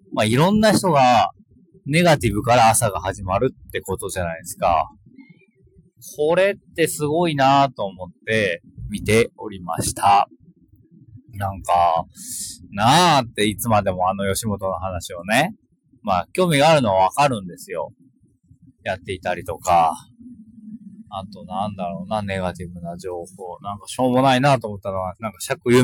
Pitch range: 100-155 Hz